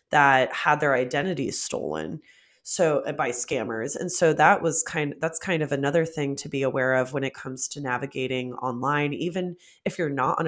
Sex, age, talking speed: female, 20-39, 200 wpm